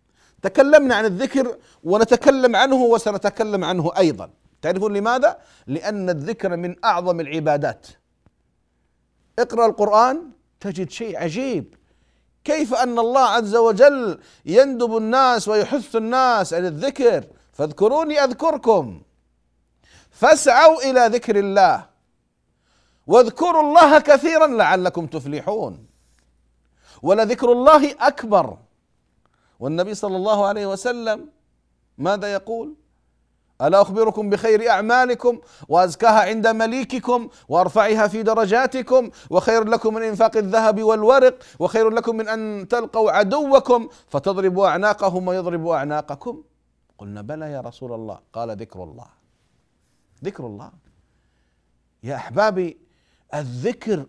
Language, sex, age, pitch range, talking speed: Arabic, male, 40-59, 155-240 Hz, 100 wpm